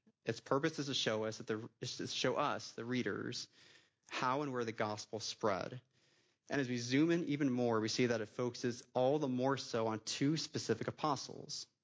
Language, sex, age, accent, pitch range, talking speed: English, male, 30-49, American, 115-135 Hz, 175 wpm